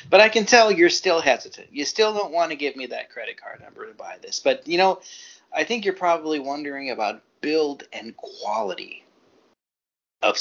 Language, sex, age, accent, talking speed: English, male, 30-49, American, 195 wpm